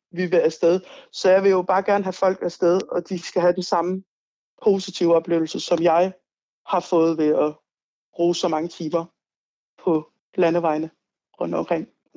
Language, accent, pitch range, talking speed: Danish, native, 175-225 Hz, 170 wpm